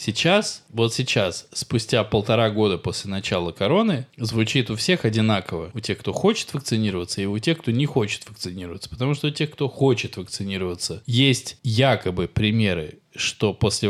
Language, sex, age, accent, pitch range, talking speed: Russian, male, 20-39, native, 105-140 Hz, 160 wpm